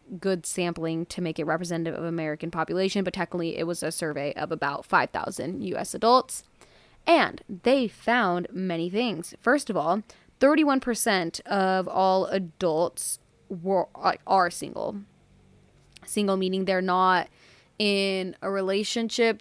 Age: 20-39